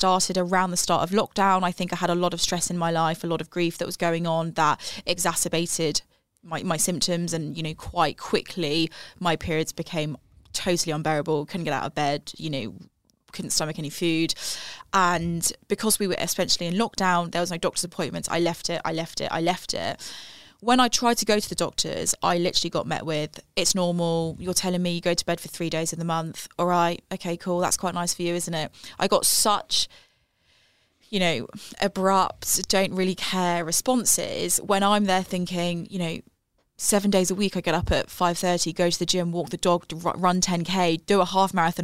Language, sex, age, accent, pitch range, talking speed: English, female, 20-39, British, 165-185 Hz, 215 wpm